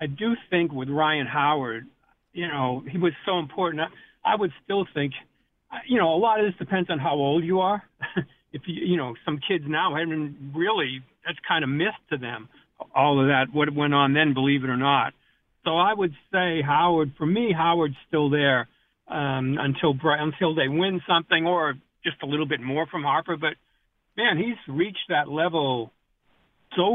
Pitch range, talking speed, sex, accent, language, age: 140-175 Hz, 195 wpm, male, American, English, 60-79